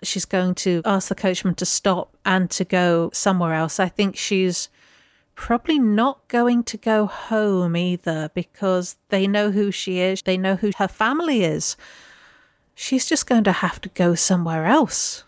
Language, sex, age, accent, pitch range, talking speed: English, female, 50-69, British, 185-240 Hz, 175 wpm